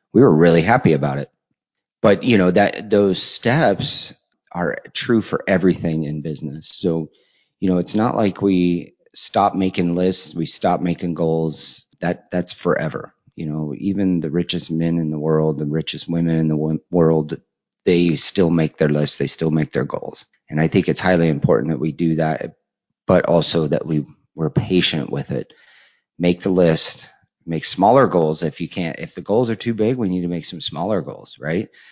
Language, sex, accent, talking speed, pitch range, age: English, male, American, 190 wpm, 80-90 Hz, 30-49